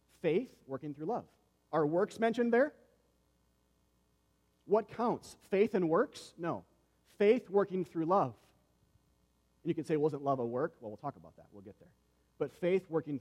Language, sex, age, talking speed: English, male, 40-59, 175 wpm